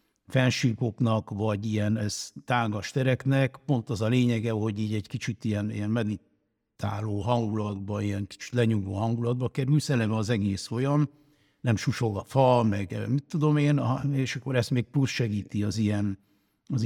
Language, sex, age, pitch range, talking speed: Hungarian, male, 60-79, 110-135 Hz, 150 wpm